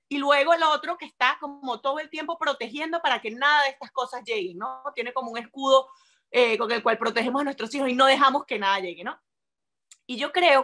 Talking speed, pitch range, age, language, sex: 230 wpm, 235-315 Hz, 30-49, Spanish, female